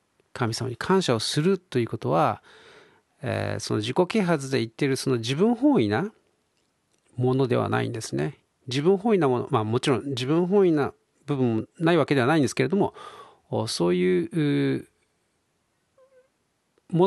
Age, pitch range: 40-59, 115-160 Hz